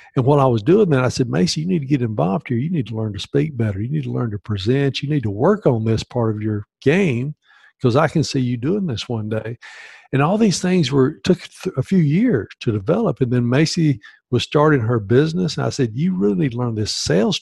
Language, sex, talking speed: English, male, 260 wpm